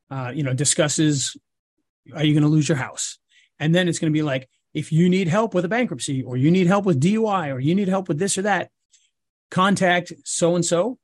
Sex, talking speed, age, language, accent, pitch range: male, 225 wpm, 40-59, English, American, 150-195 Hz